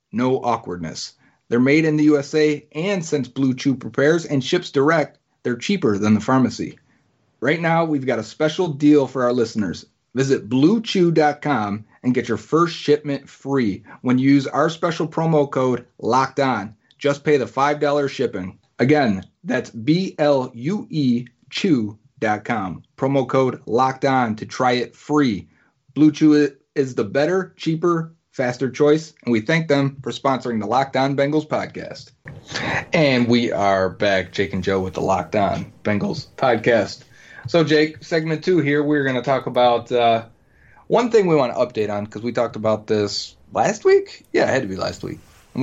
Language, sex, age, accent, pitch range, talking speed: English, male, 30-49, American, 115-150 Hz, 165 wpm